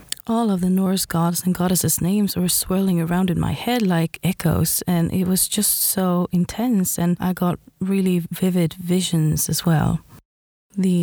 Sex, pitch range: female, 160-190 Hz